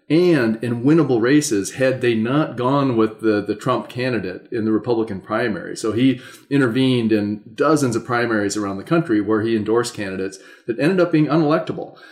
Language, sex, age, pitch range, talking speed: English, male, 30-49, 110-130 Hz, 180 wpm